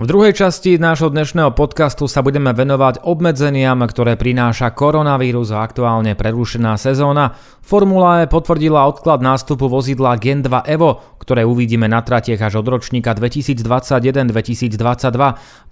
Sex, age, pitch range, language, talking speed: male, 30-49, 120-145 Hz, Slovak, 125 wpm